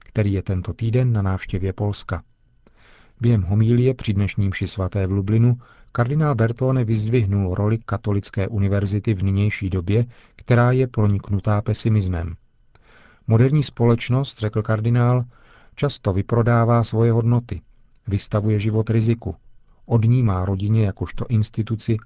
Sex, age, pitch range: male, 40-59, 100-115 Hz